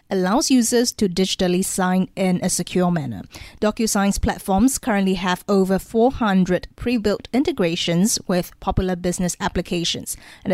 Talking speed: 125 wpm